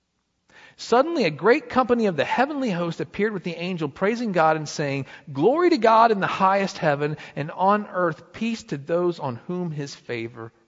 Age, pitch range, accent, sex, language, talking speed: 40-59, 145-210 Hz, American, male, English, 185 wpm